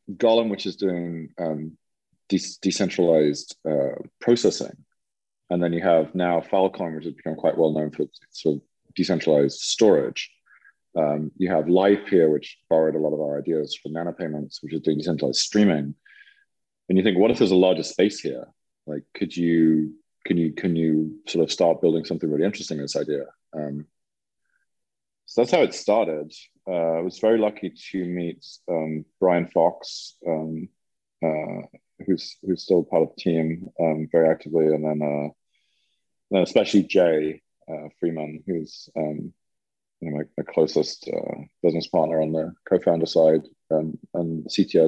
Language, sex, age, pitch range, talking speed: English, male, 30-49, 75-90 Hz, 170 wpm